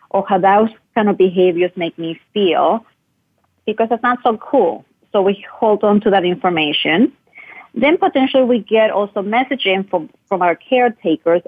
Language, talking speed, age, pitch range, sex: English, 160 wpm, 30-49, 170-225 Hz, female